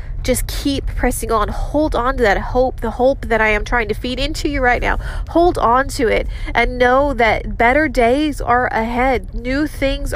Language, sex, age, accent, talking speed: English, female, 30-49, American, 200 wpm